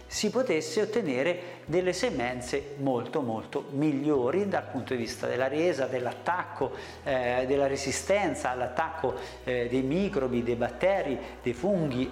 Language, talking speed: Italian, 130 wpm